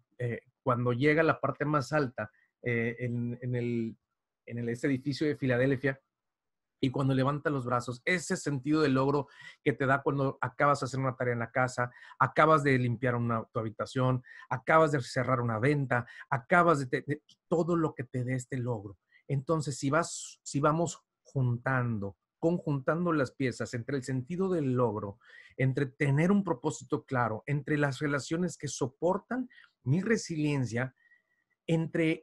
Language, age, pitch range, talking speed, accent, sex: Spanish, 40-59, 125-160 Hz, 165 wpm, Mexican, male